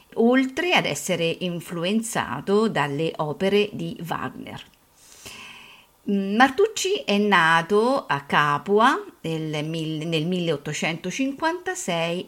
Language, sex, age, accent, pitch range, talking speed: Italian, female, 50-69, native, 170-225 Hz, 75 wpm